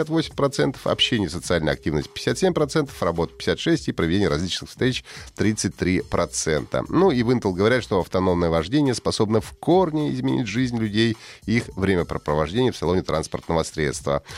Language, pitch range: Russian, 90-125 Hz